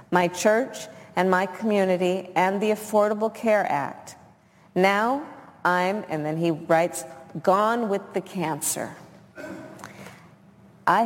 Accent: American